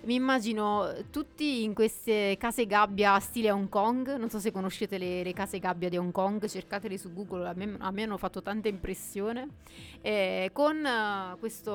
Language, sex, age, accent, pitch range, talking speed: Italian, female, 30-49, native, 185-220 Hz, 175 wpm